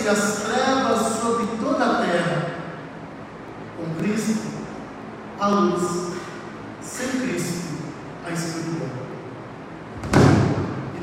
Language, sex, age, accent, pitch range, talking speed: Portuguese, male, 50-69, Brazilian, 195-235 Hz, 80 wpm